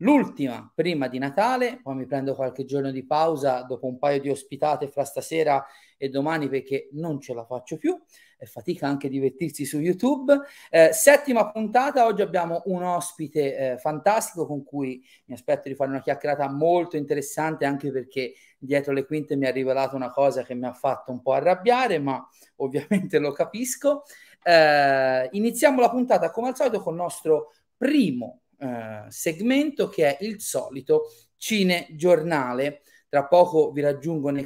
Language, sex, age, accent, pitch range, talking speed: Italian, male, 30-49, native, 135-205 Hz, 165 wpm